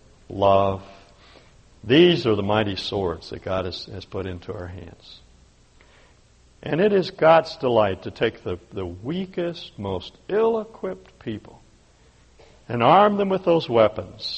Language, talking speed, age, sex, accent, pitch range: English, 140 wpm, 60-79, male, American, 95-140 Hz